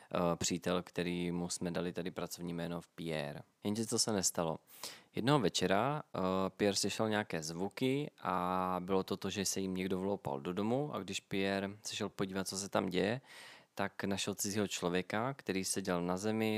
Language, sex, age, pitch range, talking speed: Czech, male, 20-39, 90-105 Hz, 175 wpm